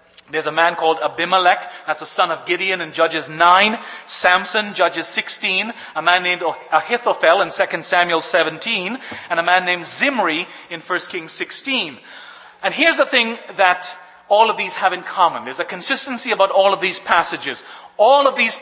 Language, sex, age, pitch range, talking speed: English, male, 40-59, 170-220 Hz, 175 wpm